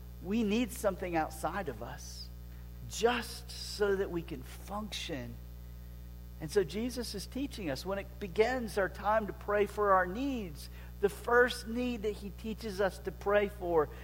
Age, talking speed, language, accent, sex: 50-69, 165 wpm, English, American, male